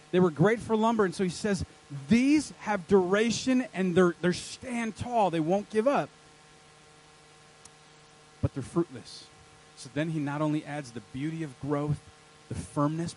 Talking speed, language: 165 wpm, English